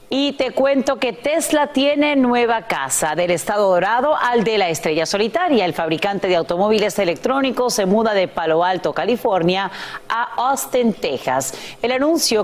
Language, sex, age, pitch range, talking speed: Spanish, female, 40-59, 180-235 Hz, 155 wpm